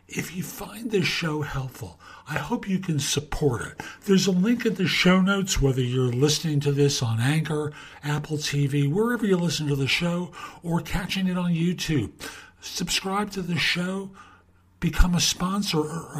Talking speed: 175 wpm